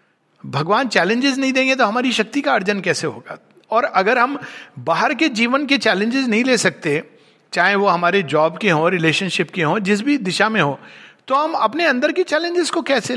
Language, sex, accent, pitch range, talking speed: Hindi, male, native, 165-240 Hz, 200 wpm